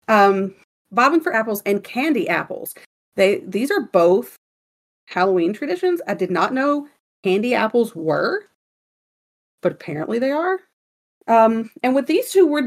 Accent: American